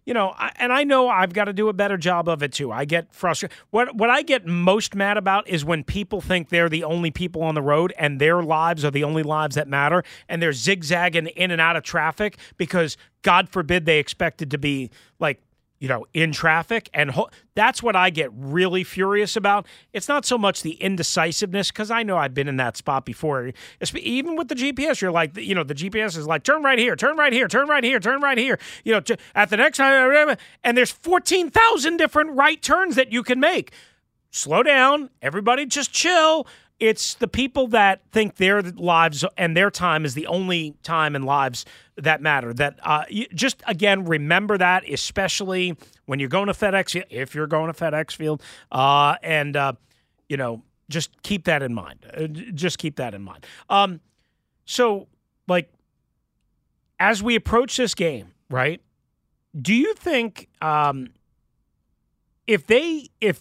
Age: 40-59